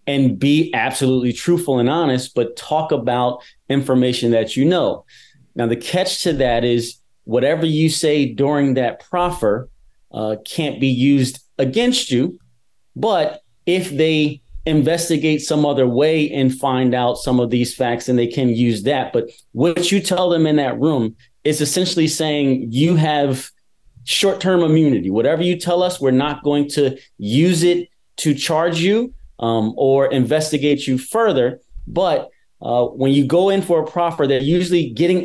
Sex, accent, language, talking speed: male, American, English, 160 wpm